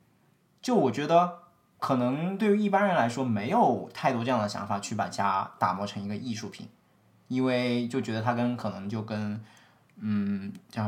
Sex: male